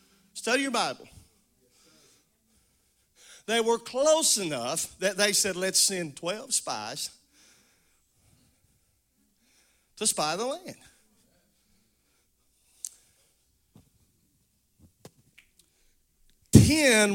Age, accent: 40-59, American